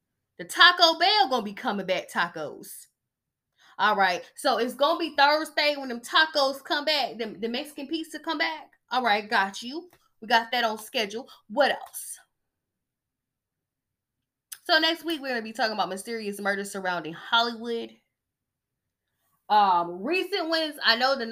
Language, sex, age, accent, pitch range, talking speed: English, female, 10-29, American, 215-305 Hz, 155 wpm